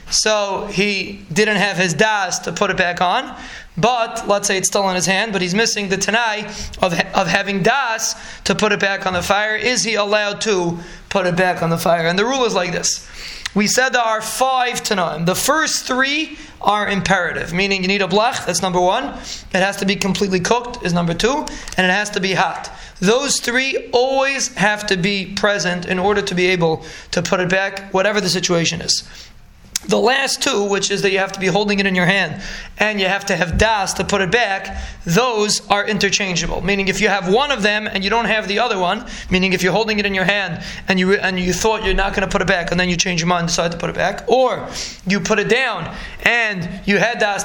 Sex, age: male, 20-39